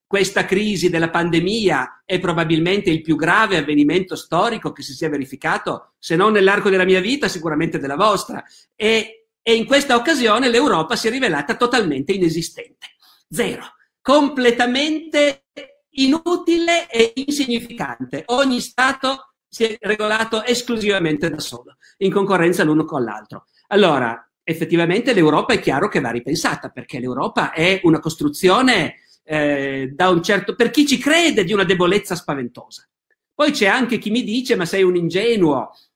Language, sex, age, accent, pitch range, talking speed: Italian, male, 50-69, native, 165-235 Hz, 145 wpm